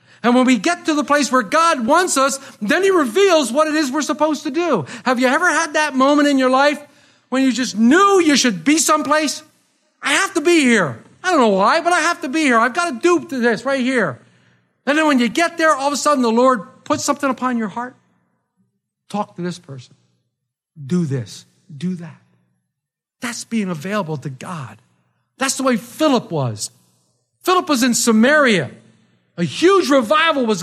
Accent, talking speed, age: American, 205 wpm, 50-69